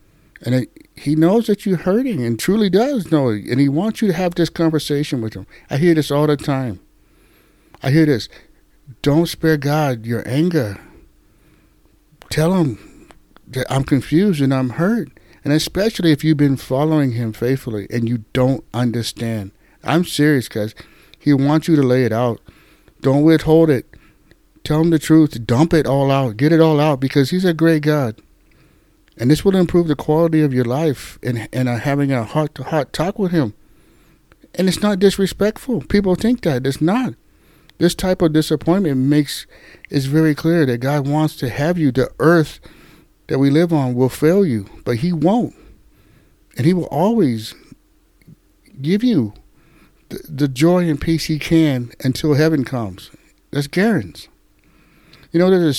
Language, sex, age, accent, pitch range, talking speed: English, male, 60-79, American, 130-165 Hz, 170 wpm